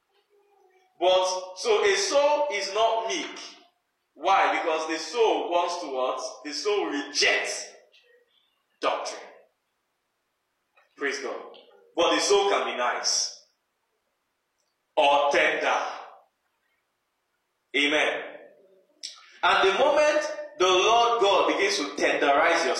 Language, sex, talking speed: English, male, 100 wpm